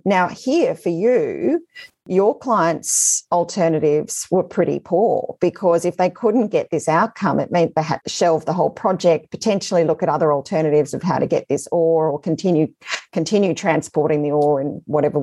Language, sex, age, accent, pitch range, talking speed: English, female, 40-59, Australian, 150-180 Hz, 175 wpm